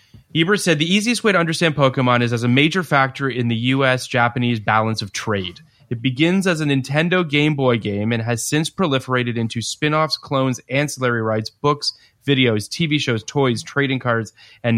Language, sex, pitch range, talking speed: English, male, 115-145 Hz, 180 wpm